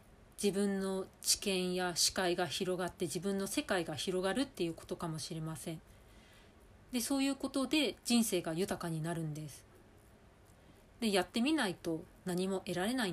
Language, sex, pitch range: Japanese, female, 155-220 Hz